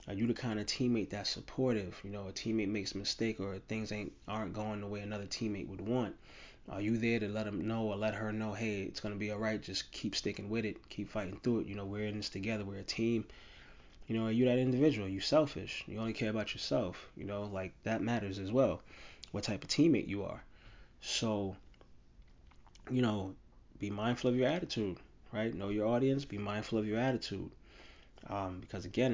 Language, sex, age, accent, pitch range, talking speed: English, male, 20-39, American, 100-115 Hz, 220 wpm